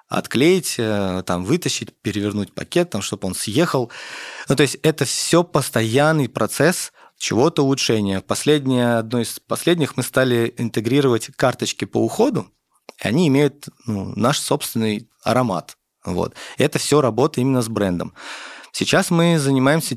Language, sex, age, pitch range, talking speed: Russian, male, 30-49, 105-145 Hz, 135 wpm